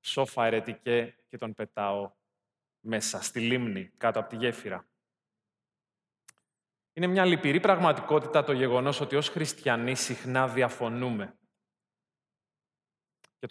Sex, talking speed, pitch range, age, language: male, 100 wpm, 125-165 Hz, 30-49, Greek